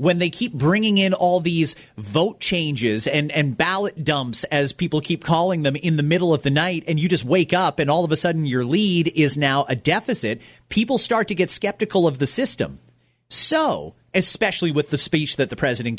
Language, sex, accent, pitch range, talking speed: English, male, American, 135-190 Hz, 210 wpm